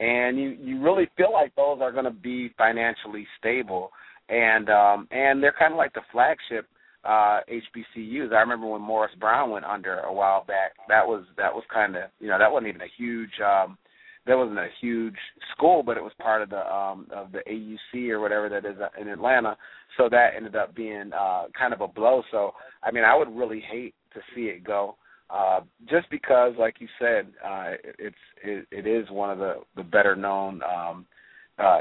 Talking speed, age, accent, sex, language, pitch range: 205 wpm, 30-49, American, male, English, 105-125 Hz